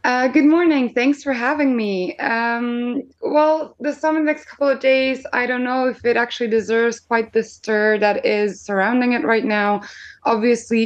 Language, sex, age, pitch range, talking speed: English, female, 20-39, 200-240 Hz, 190 wpm